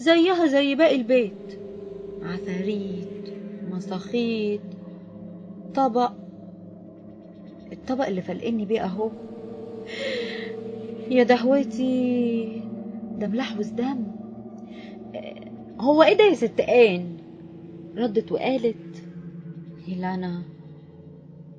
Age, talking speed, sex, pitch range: 20-39, 70 wpm, female, 185-270 Hz